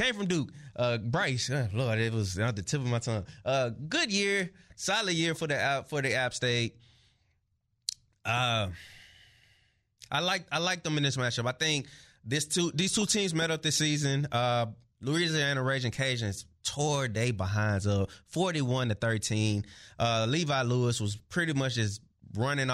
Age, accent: 20-39, American